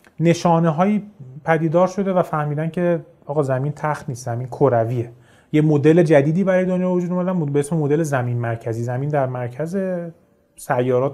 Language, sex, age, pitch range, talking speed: Persian, male, 30-49, 135-175 Hz, 150 wpm